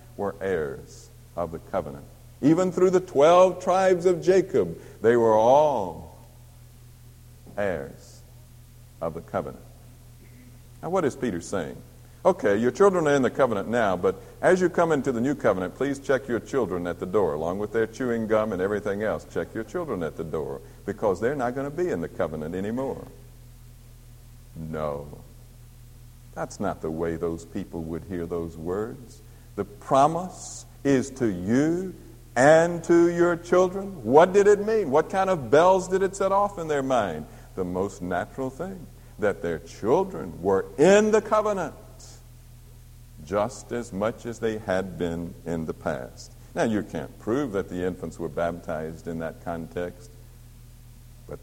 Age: 60-79